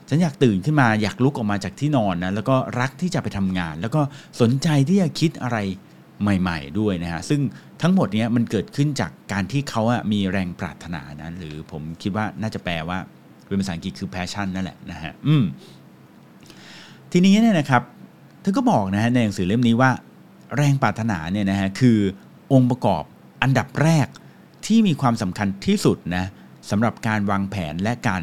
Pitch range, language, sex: 95-140 Hz, English, male